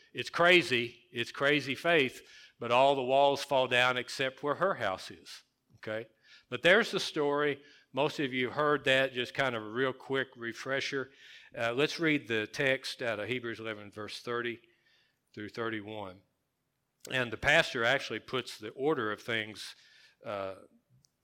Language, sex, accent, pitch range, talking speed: English, male, American, 110-135 Hz, 160 wpm